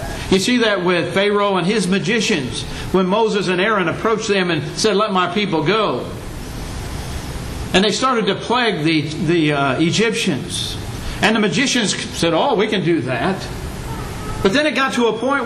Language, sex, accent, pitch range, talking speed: English, male, American, 140-205 Hz, 175 wpm